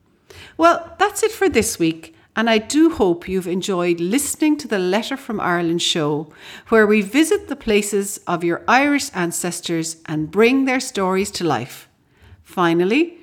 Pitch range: 165-230 Hz